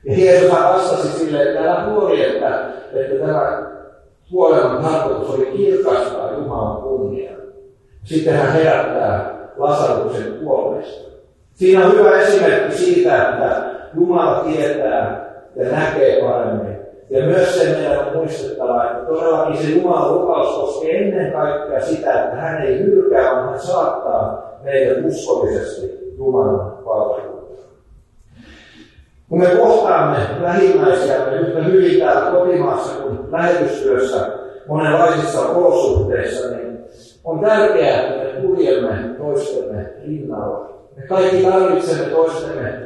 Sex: male